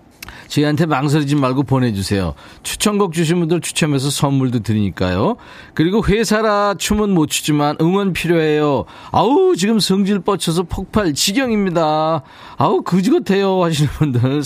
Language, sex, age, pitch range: Korean, male, 40-59, 140-190 Hz